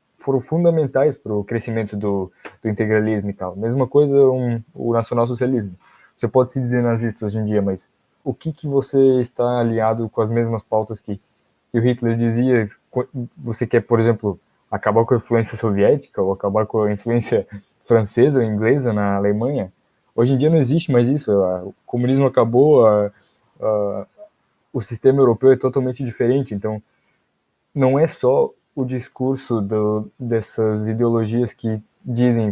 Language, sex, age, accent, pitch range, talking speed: Portuguese, male, 20-39, Brazilian, 110-130 Hz, 160 wpm